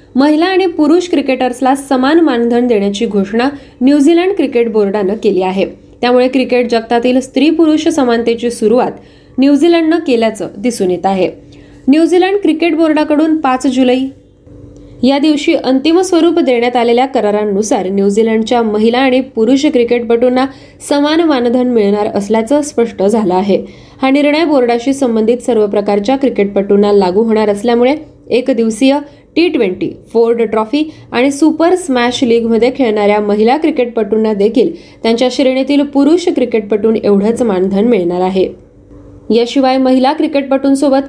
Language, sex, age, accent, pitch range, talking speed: Marathi, female, 20-39, native, 225-280 Hz, 120 wpm